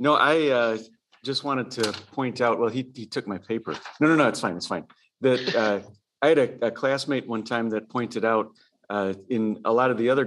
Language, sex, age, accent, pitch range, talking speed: English, male, 40-59, American, 105-120 Hz, 235 wpm